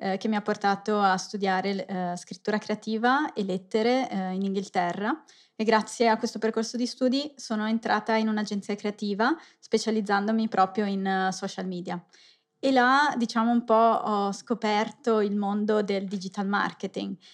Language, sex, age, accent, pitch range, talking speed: Italian, female, 20-39, native, 195-225 Hz, 140 wpm